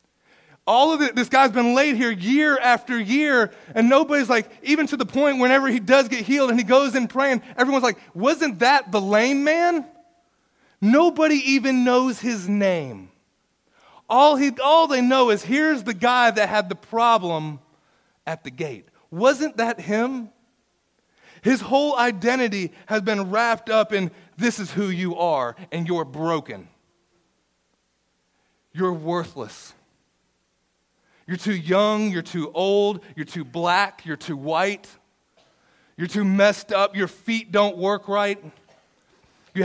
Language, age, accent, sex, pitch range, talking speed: English, 30-49, American, male, 180-250 Hz, 150 wpm